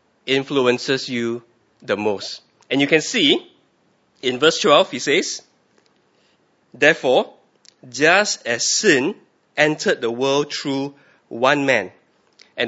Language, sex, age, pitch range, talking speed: English, male, 20-39, 135-190 Hz, 115 wpm